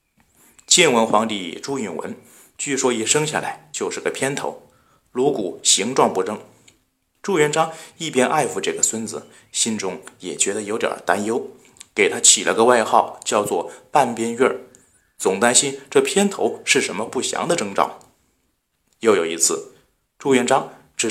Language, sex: Chinese, male